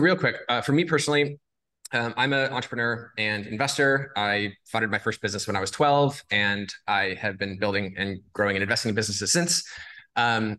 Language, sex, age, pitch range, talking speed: English, male, 20-39, 110-145 Hz, 195 wpm